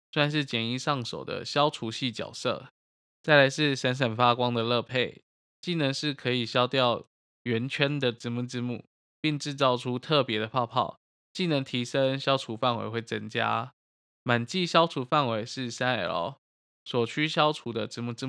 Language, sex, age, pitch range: Chinese, male, 20-39, 120-145 Hz